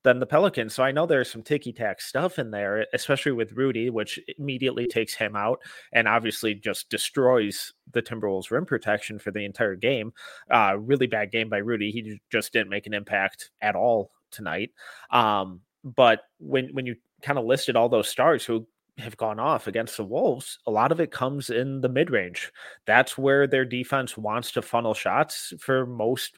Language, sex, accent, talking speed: English, male, American, 195 wpm